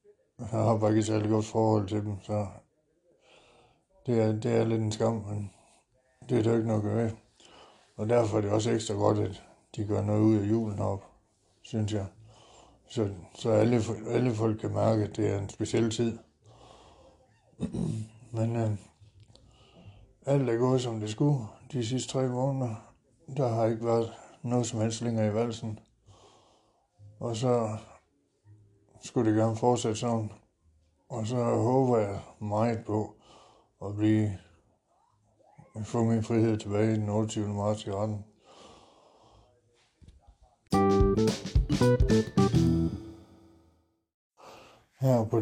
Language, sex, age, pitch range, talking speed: Danish, male, 60-79, 105-115 Hz, 135 wpm